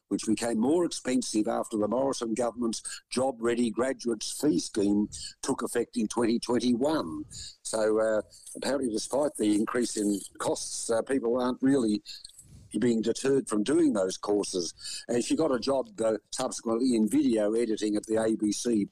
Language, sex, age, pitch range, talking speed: English, male, 60-79, 110-135 Hz, 150 wpm